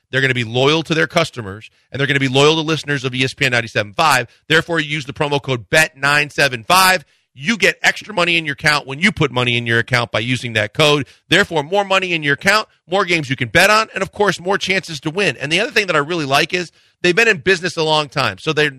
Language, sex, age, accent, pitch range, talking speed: English, male, 40-59, American, 130-170 Hz, 260 wpm